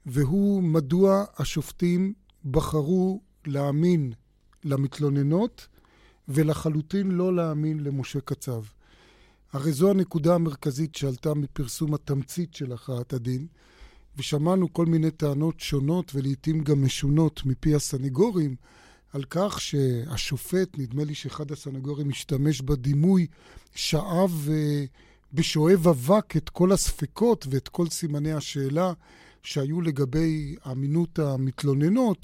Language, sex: Hebrew, male